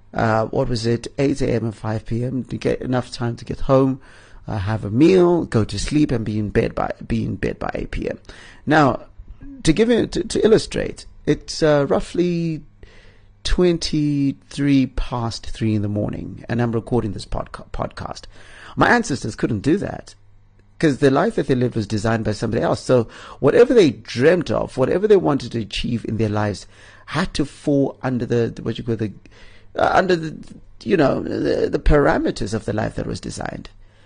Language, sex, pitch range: English, male, 105-130 Hz